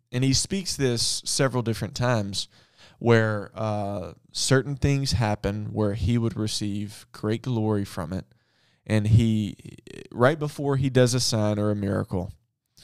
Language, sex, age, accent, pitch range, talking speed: English, male, 20-39, American, 105-125 Hz, 145 wpm